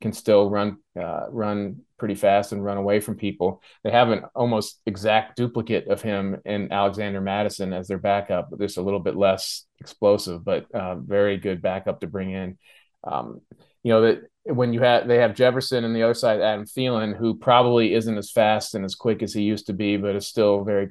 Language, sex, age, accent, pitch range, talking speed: English, male, 30-49, American, 95-110 Hz, 210 wpm